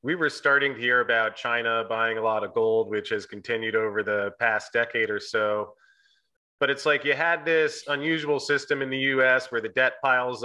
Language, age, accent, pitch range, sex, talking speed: English, 30-49, American, 120-145 Hz, male, 205 wpm